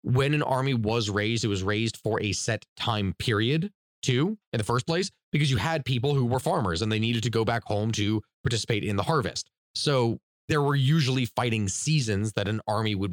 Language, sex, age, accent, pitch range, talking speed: English, male, 30-49, American, 105-140 Hz, 215 wpm